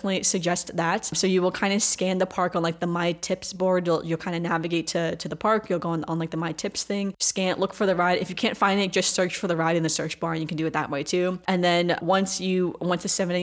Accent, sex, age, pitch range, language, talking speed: American, female, 10-29, 165-185 Hz, English, 305 wpm